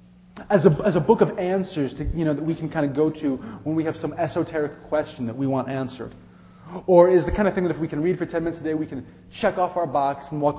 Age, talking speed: 30-49, 290 wpm